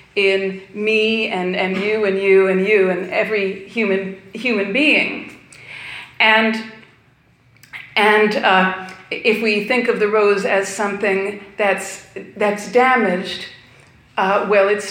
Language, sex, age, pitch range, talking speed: English, female, 40-59, 190-215 Hz, 125 wpm